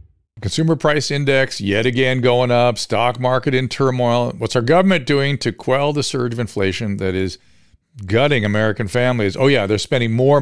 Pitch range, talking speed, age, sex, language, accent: 105-135 Hz, 180 wpm, 50-69, male, English, American